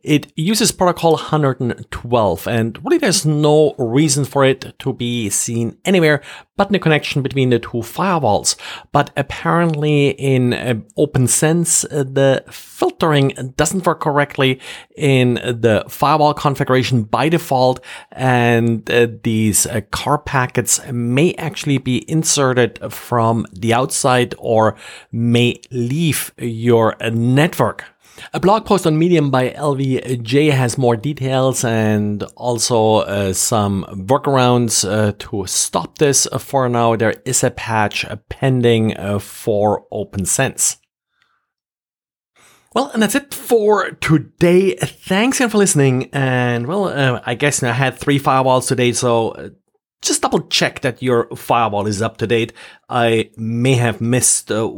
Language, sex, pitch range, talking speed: English, male, 115-150 Hz, 135 wpm